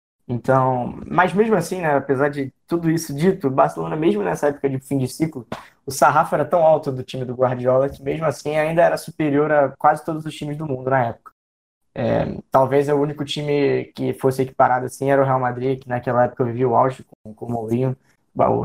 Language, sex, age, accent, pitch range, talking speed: Portuguese, male, 20-39, Brazilian, 125-145 Hz, 215 wpm